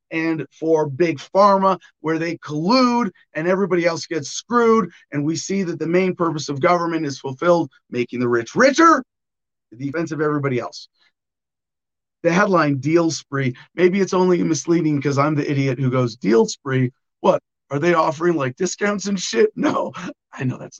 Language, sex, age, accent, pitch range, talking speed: English, male, 40-59, American, 130-180 Hz, 175 wpm